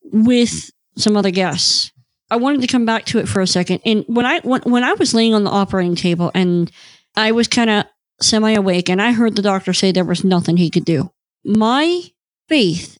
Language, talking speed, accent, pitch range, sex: English, 210 wpm, American, 190-250 Hz, female